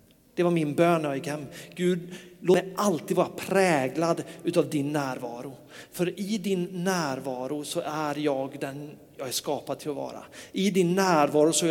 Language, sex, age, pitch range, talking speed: Swedish, male, 40-59, 145-175 Hz, 165 wpm